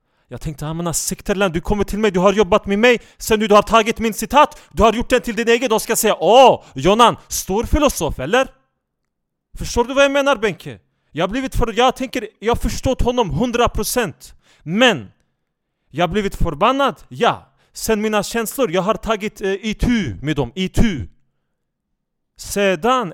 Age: 30-49